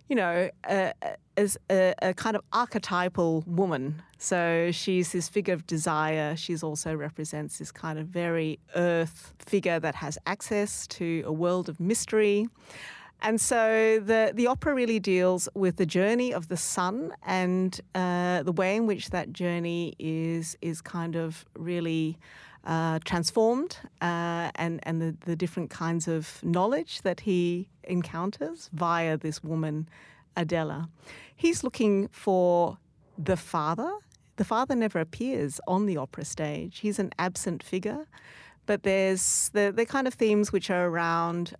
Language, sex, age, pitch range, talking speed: English, female, 40-59, 165-195 Hz, 150 wpm